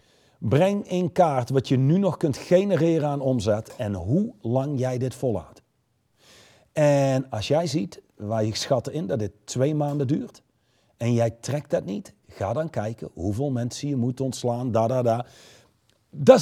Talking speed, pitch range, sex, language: 165 wpm, 115-160 Hz, male, Dutch